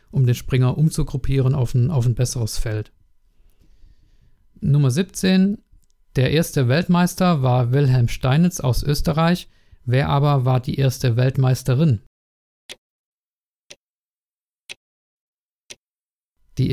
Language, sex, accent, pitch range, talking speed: German, male, German, 125-150 Hz, 95 wpm